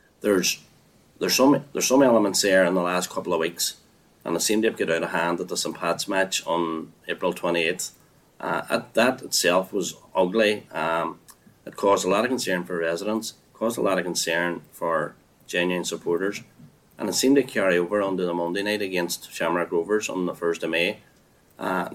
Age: 30-49